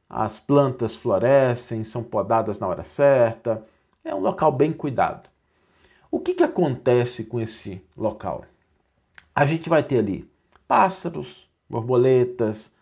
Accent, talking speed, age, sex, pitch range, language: Brazilian, 125 wpm, 50-69, male, 110-145 Hz, Portuguese